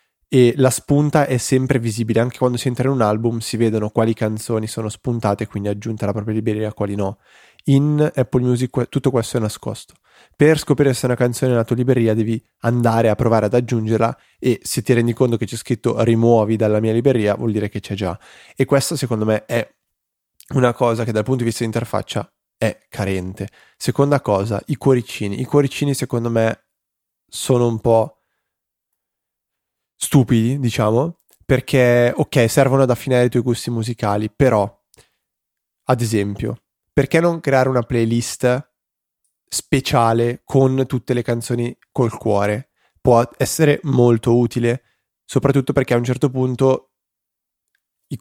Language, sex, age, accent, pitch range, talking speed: Italian, male, 20-39, native, 110-130 Hz, 165 wpm